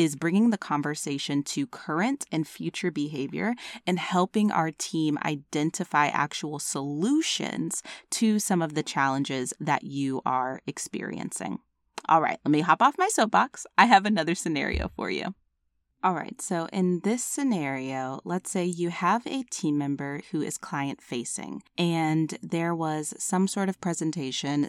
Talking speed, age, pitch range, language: 155 wpm, 20-39, 145-190 Hz, English